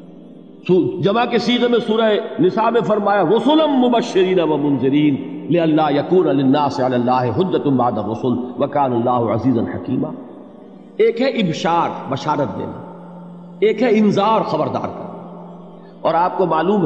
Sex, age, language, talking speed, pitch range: male, 50-69, Urdu, 125 wpm, 150-230 Hz